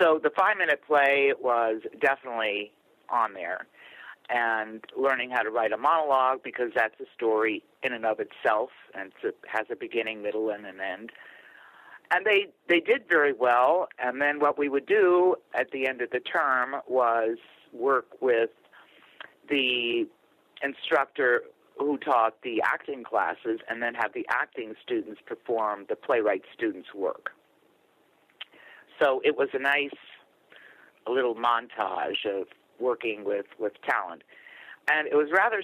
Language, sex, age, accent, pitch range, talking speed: English, male, 50-69, American, 120-170 Hz, 150 wpm